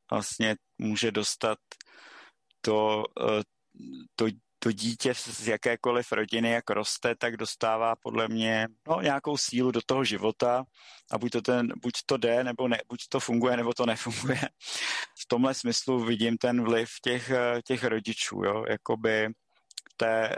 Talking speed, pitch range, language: 145 wpm, 110-120 Hz, Czech